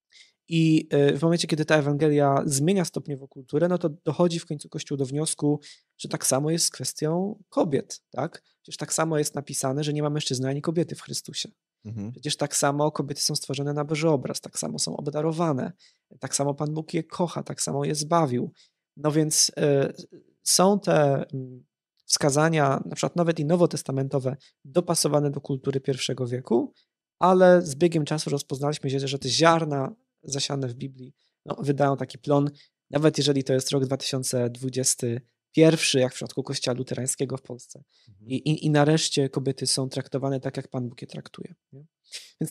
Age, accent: 20-39, native